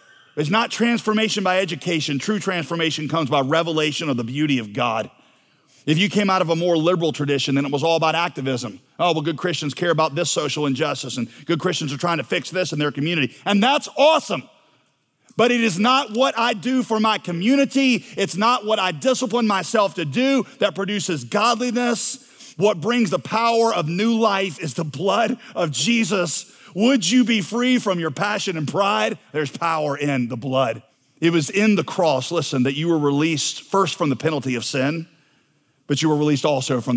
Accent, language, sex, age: American, English, male, 40-59